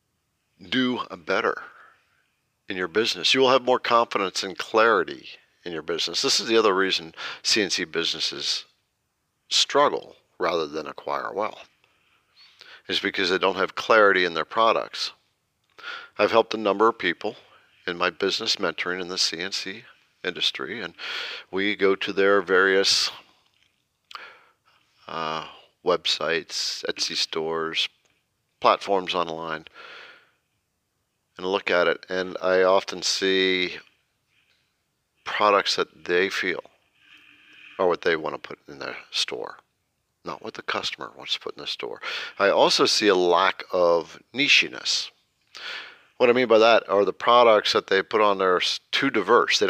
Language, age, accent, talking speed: English, 50-69, American, 140 wpm